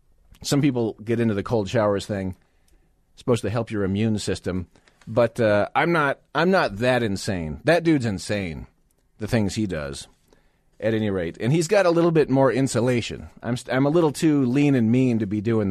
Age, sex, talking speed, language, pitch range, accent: 40-59, male, 205 wpm, English, 100-130 Hz, American